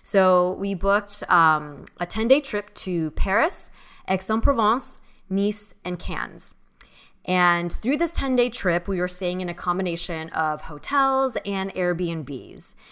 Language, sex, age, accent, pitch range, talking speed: English, female, 20-39, American, 170-205 Hz, 135 wpm